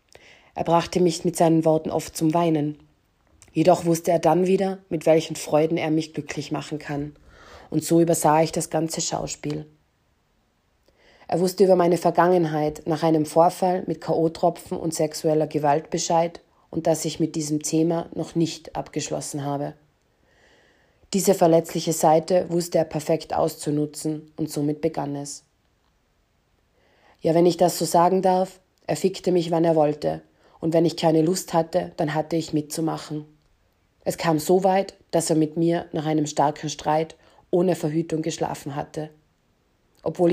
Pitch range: 150-170 Hz